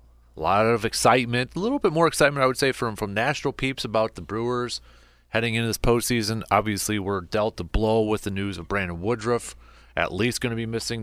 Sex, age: male, 30-49